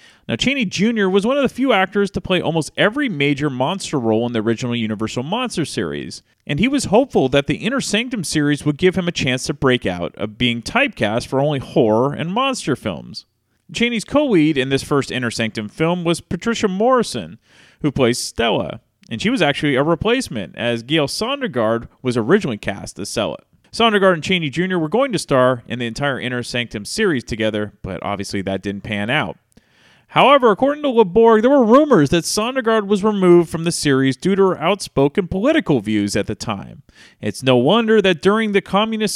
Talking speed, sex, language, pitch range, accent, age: 195 wpm, male, English, 120-200 Hz, American, 30-49